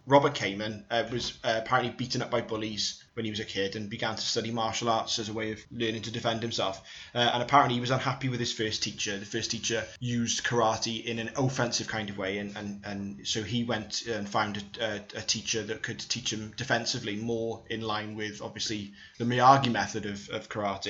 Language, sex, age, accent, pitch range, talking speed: English, male, 20-39, British, 105-120 Hz, 225 wpm